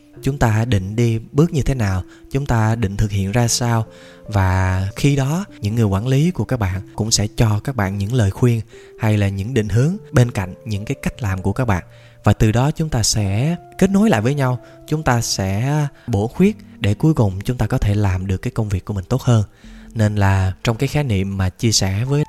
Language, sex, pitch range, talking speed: Vietnamese, male, 100-135 Hz, 240 wpm